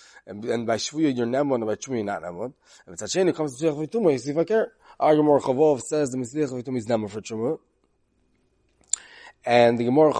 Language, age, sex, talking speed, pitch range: English, 30-49, male, 210 wpm, 120-155 Hz